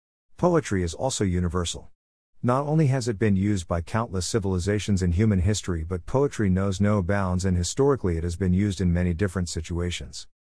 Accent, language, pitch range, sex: American, English, 90-110 Hz, male